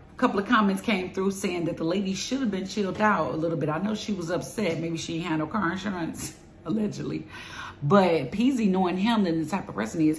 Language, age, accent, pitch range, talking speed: English, 40-59, American, 160-200 Hz, 230 wpm